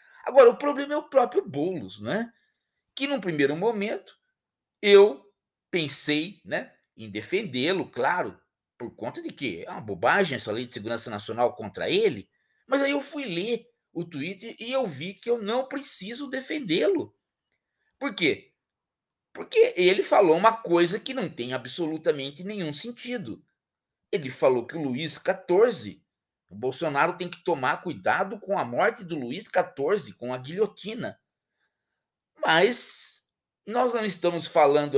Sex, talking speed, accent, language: male, 150 wpm, Brazilian, Indonesian